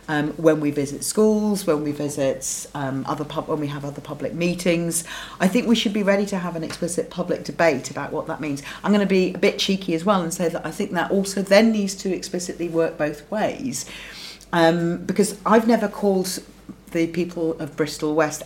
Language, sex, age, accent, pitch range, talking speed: English, female, 40-59, British, 150-180 Hz, 215 wpm